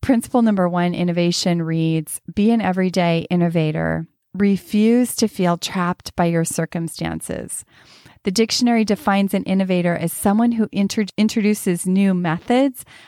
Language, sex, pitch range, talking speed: English, female, 165-200 Hz, 125 wpm